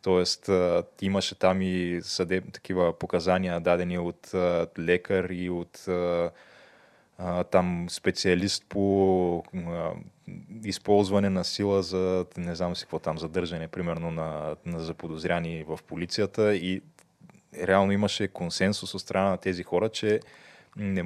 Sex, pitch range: male, 90-100 Hz